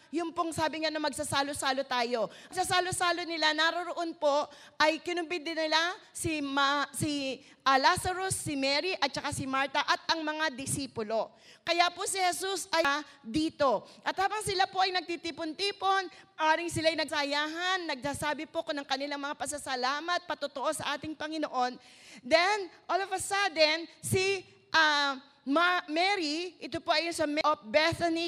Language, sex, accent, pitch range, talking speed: English, female, Filipino, 280-335 Hz, 155 wpm